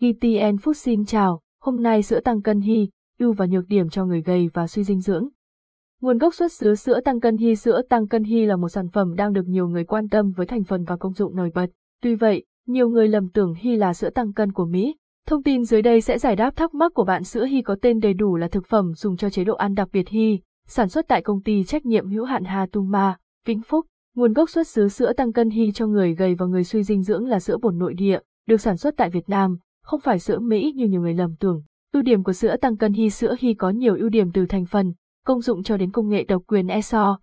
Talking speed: 270 wpm